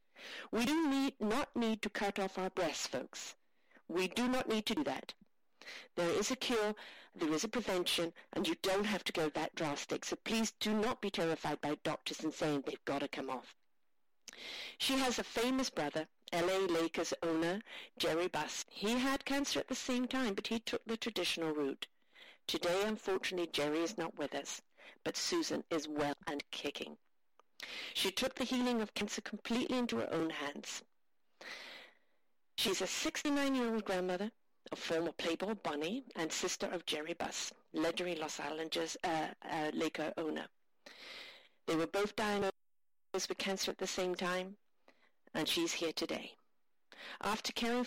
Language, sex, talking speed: English, female, 165 wpm